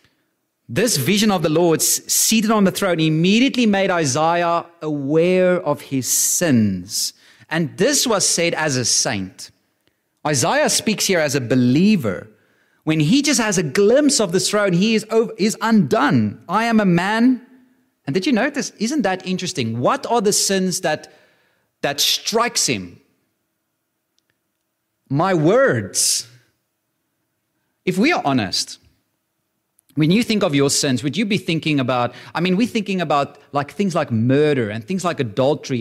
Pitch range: 135-210 Hz